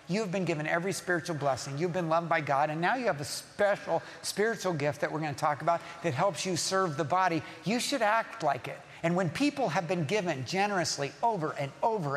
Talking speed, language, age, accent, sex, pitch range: 220 wpm, English, 50-69, American, male, 165-200 Hz